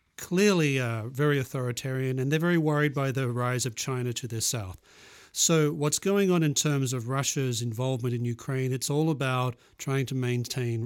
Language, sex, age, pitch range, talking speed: English, male, 40-59, 120-145 Hz, 180 wpm